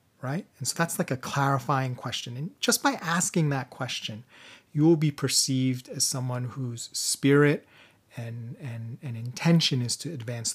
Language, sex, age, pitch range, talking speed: English, male, 30-49, 120-150 Hz, 165 wpm